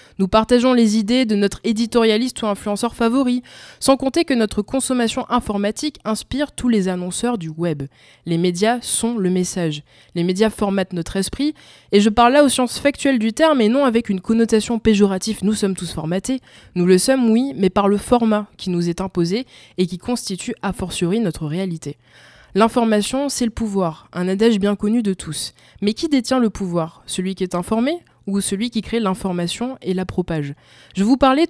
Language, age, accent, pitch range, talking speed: French, 20-39, French, 185-235 Hz, 195 wpm